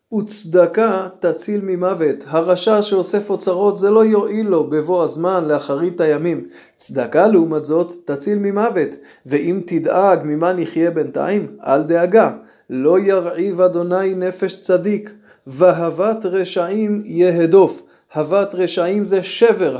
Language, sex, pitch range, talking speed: Hebrew, male, 170-205 Hz, 115 wpm